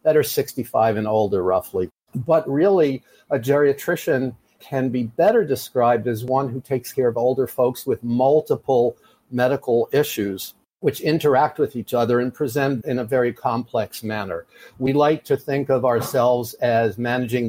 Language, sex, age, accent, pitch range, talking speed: English, male, 50-69, American, 115-135 Hz, 160 wpm